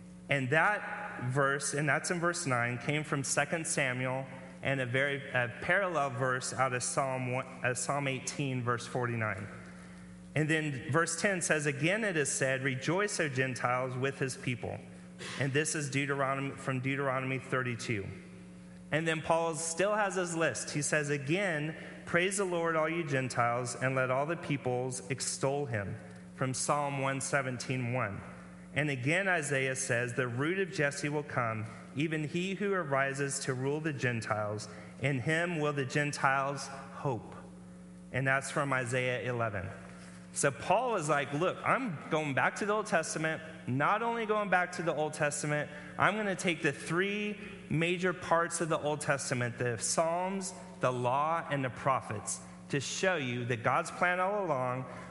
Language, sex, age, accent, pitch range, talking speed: English, male, 30-49, American, 125-160 Hz, 160 wpm